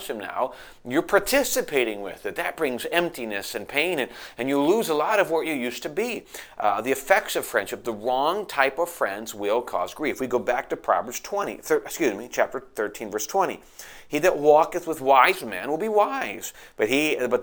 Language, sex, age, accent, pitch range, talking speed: English, male, 40-59, American, 125-170 Hz, 210 wpm